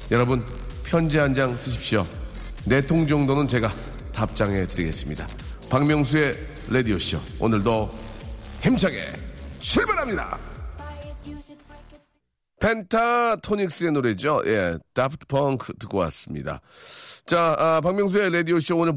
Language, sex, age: Korean, male, 40-59